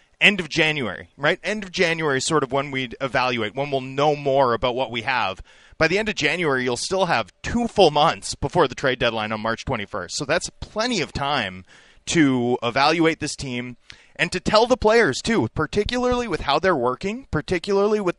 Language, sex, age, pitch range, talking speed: English, male, 30-49, 125-165 Hz, 200 wpm